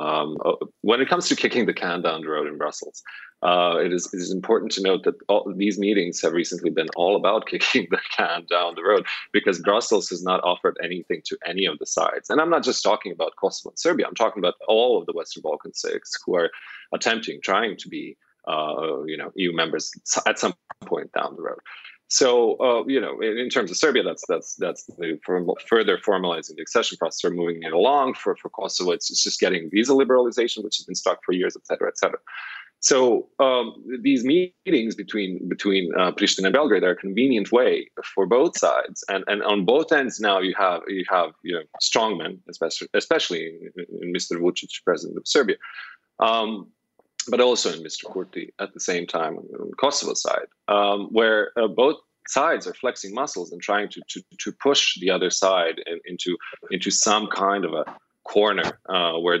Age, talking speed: 30-49, 205 wpm